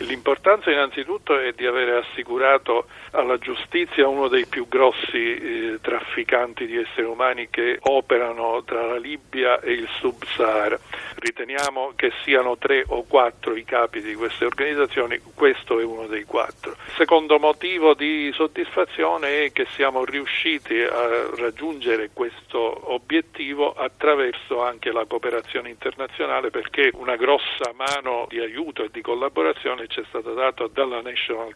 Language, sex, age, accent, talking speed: Italian, male, 50-69, native, 140 wpm